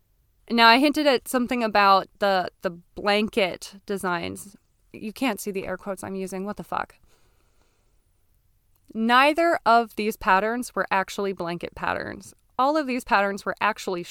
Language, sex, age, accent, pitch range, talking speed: English, female, 20-39, American, 185-230 Hz, 150 wpm